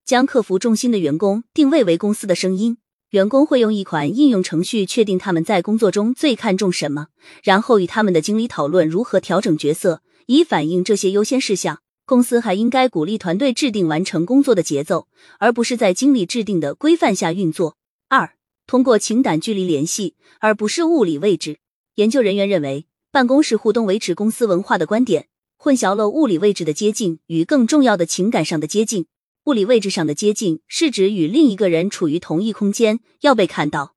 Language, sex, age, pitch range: Chinese, female, 20-39, 170-245 Hz